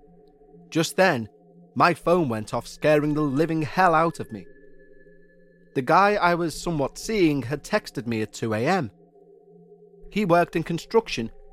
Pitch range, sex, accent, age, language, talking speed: 135-190 Hz, male, British, 30-49, English, 145 wpm